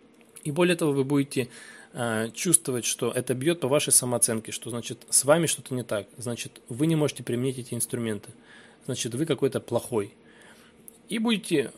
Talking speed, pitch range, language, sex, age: 165 wpm, 120-155 Hz, Russian, male, 20-39